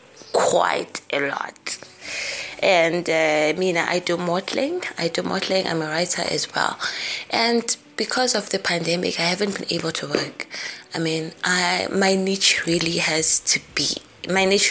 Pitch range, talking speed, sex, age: 165-200 Hz, 160 wpm, female, 20-39